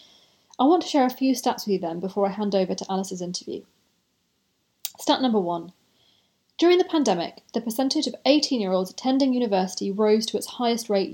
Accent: British